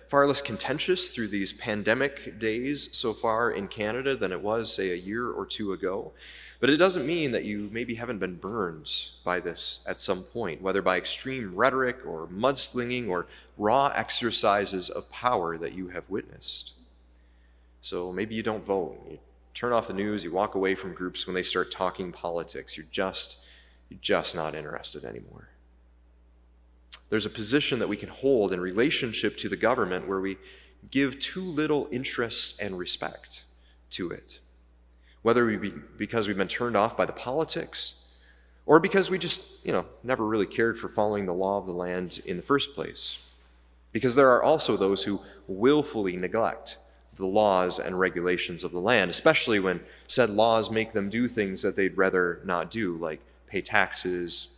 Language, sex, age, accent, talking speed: English, male, 30-49, American, 175 wpm